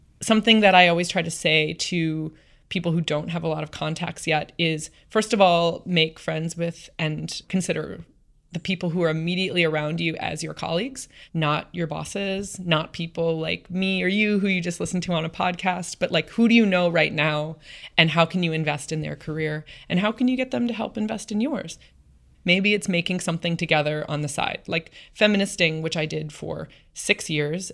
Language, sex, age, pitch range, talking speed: English, female, 20-39, 155-180 Hz, 210 wpm